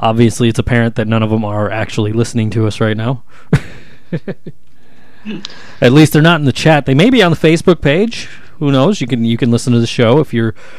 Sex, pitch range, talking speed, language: male, 110-130 Hz, 220 wpm, English